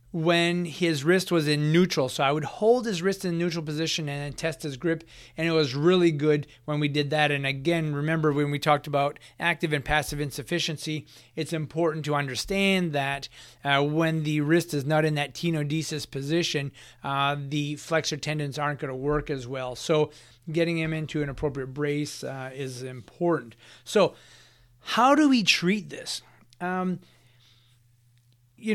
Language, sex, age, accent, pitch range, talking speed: English, male, 30-49, American, 145-175 Hz, 170 wpm